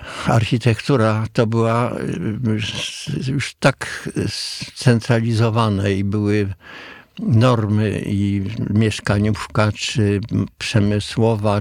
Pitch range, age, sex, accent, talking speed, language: 105-120 Hz, 60-79, male, native, 70 wpm, Polish